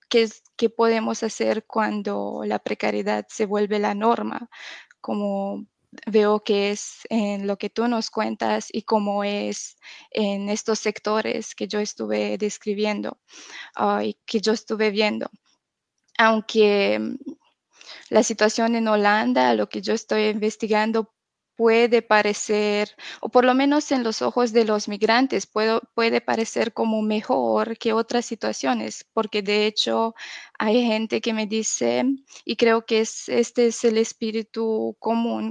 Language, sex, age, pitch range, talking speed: Spanish, female, 20-39, 205-225 Hz, 140 wpm